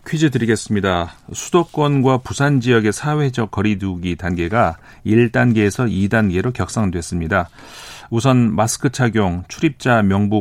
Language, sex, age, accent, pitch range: Korean, male, 40-59, native, 95-130 Hz